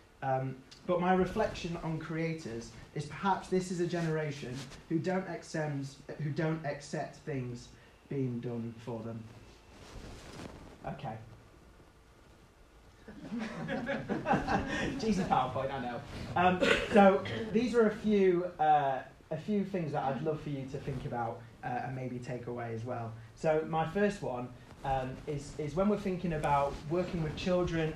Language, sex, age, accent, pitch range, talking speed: English, male, 30-49, British, 130-170 Hz, 145 wpm